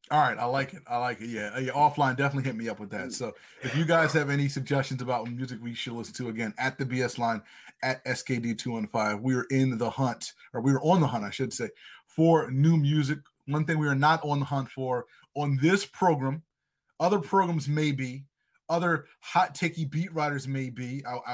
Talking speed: 215 wpm